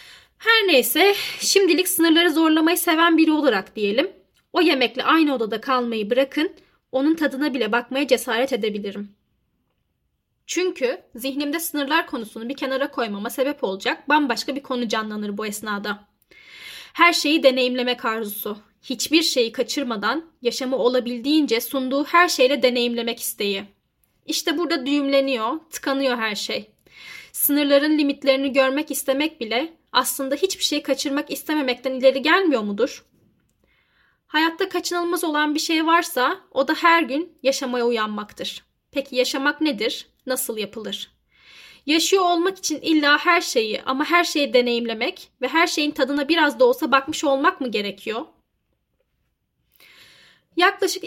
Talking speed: 125 wpm